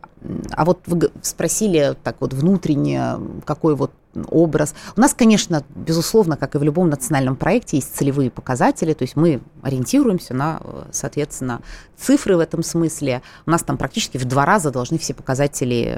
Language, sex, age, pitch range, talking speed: Russian, female, 30-49, 130-175 Hz, 145 wpm